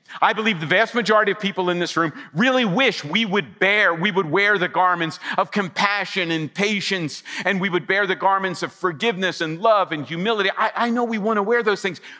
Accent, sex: American, male